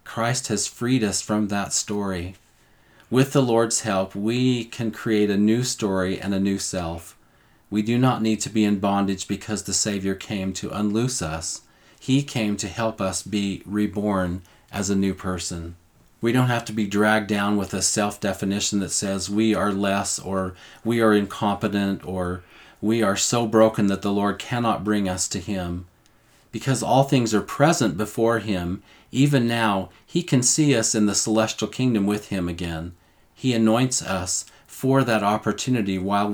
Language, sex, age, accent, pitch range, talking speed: English, male, 40-59, American, 95-115 Hz, 175 wpm